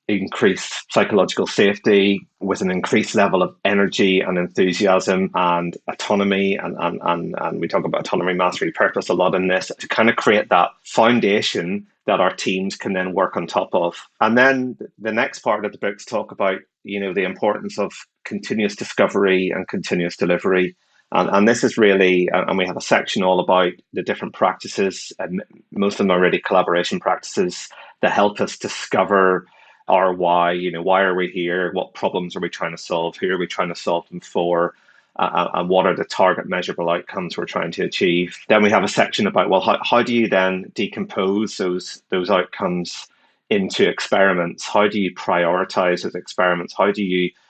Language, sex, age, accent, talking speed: English, male, 30-49, British, 190 wpm